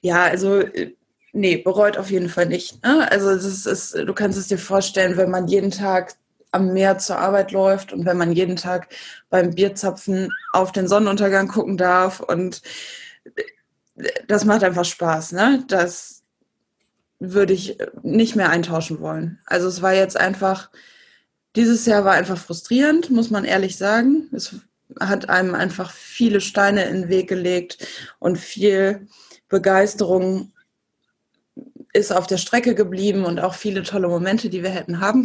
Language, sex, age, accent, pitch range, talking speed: German, female, 20-39, German, 180-205 Hz, 160 wpm